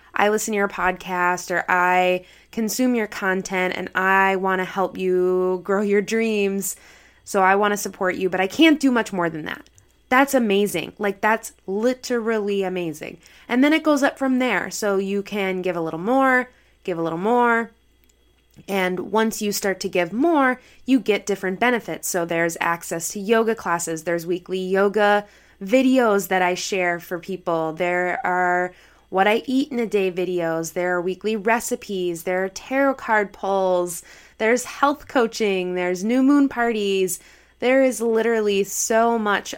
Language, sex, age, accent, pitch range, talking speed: English, female, 20-39, American, 180-220 Hz, 170 wpm